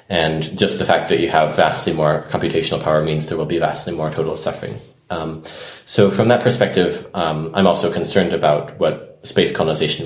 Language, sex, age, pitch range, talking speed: English, male, 30-49, 75-95 Hz, 190 wpm